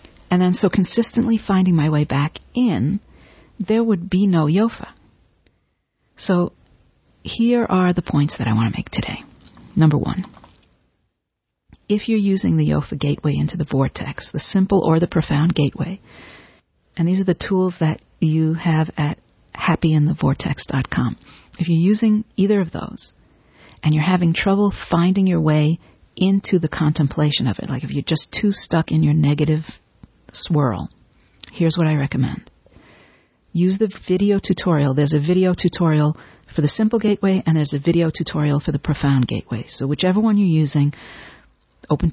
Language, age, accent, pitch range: English, 50-69, American, 150-190 Hz